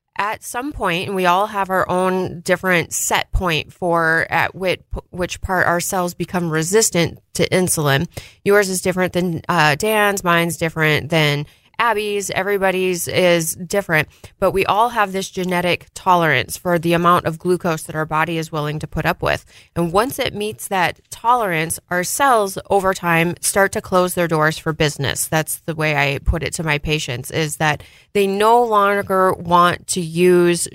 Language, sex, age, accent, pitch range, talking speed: English, female, 20-39, American, 160-195 Hz, 180 wpm